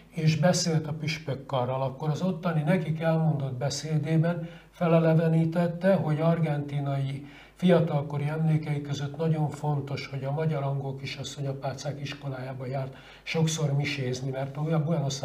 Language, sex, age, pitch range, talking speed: Hungarian, male, 60-79, 135-160 Hz, 120 wpm